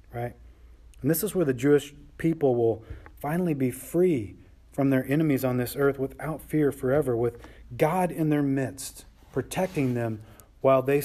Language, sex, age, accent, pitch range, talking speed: English, male, 40-59, American, 120-175 Hz, 165 wpm